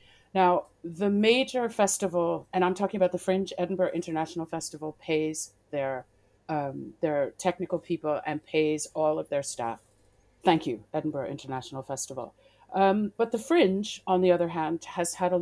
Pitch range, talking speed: 155-200 Hz, 155 wpm